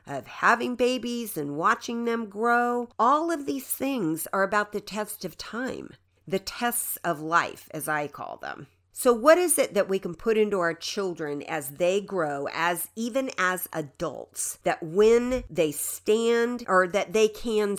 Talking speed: 170 wpm